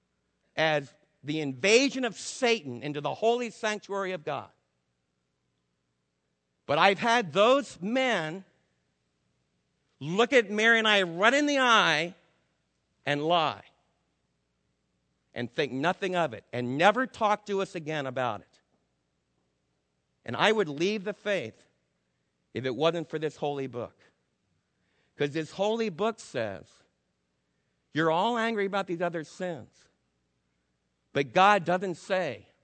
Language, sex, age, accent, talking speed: English, male, 50-69, American, 125 wpm